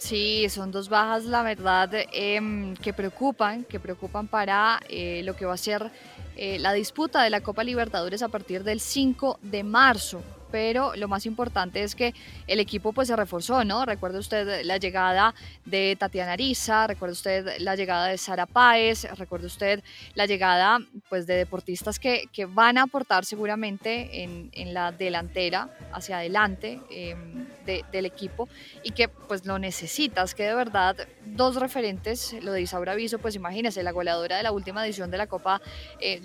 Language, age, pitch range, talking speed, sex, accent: Spanish, 20-39, 190-230 Hz, 175 wpm, female, Colombian